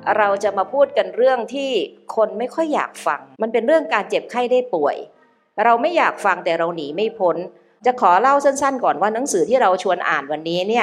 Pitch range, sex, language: 175-255 Hz, female, Thai